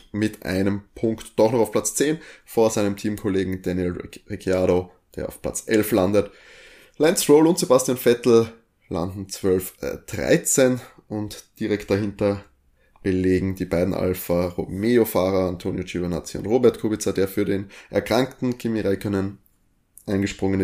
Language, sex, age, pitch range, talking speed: German, male, 20-39, 95-115 Hz, 135 wpm